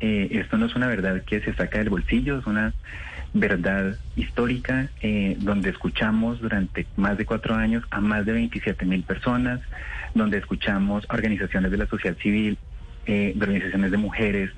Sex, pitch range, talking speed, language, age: male, 100-120 Hz, 175 wpm, Spanish, 30-49